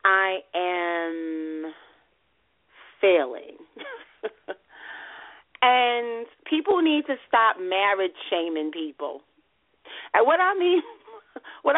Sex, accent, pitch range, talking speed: female, American, 240-350 Hz, 80 wpm